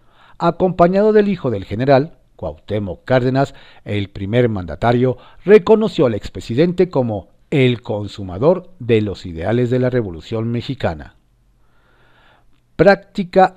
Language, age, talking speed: Spanish, 50-69, 105 wpm